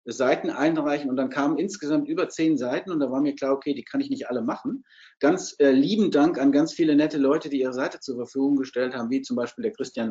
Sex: male